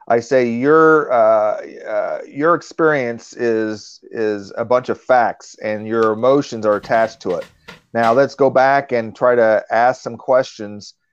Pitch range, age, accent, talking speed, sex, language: 110-135 Hz, 40-59, American, 160 wpm, male, English